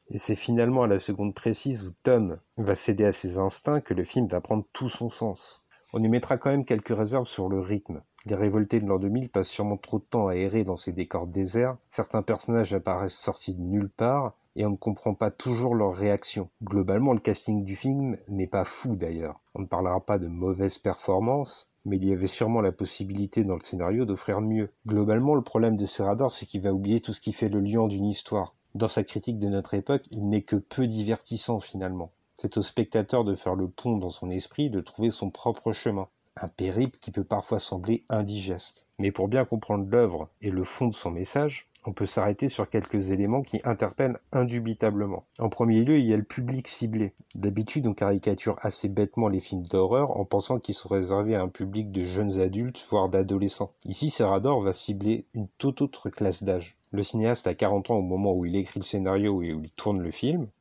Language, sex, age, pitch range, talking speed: French, male, 40-59, 95-115 Hz, 215 wpm